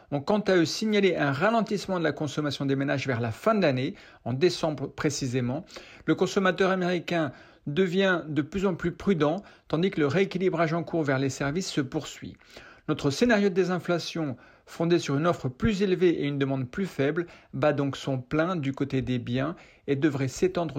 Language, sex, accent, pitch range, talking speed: French, male, French, 140-175 Hz, 190 wpm